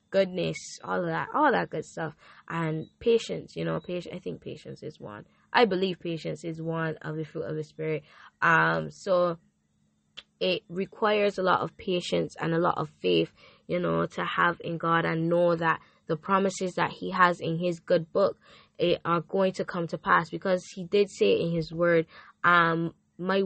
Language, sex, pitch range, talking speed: English, female, 165-190 Hz, 195 wpm